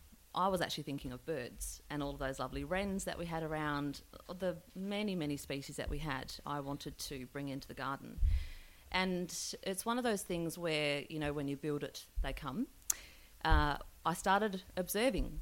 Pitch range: 140-175 Hz